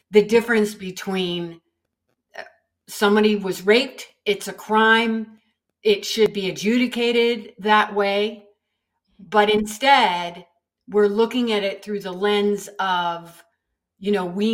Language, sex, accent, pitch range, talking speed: English, female, American, 190-225 Hz, 115 wpm